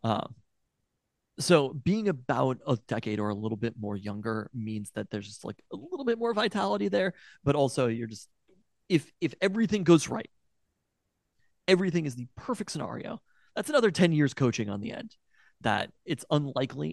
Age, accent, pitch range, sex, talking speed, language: 30-49, American, 115-175 Hz, male, 170 wpm, English